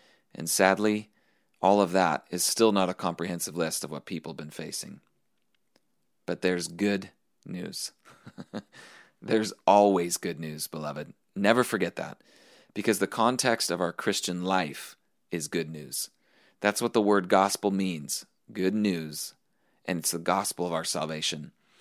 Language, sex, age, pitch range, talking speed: English, male, 30-49, 85-105 Hz, 150 wpm